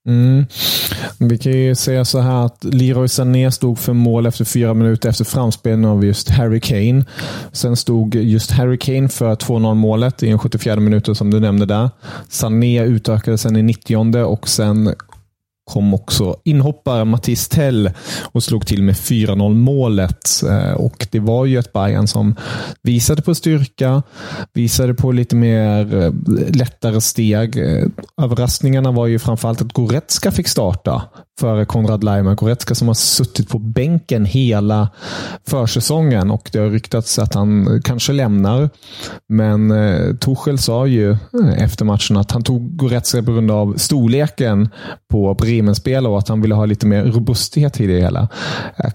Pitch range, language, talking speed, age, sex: 110-130 Hz, Swedish, 160 wpm, 30-49, male